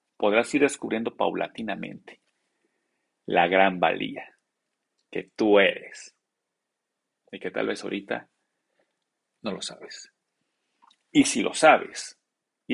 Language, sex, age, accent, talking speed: Spanish, male, 40-59, Mexican, 110 wpm